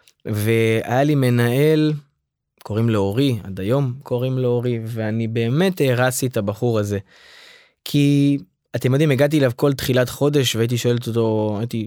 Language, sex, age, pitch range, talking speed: Hebrew, male, 20-39, 115-155 Hz, 130 wpm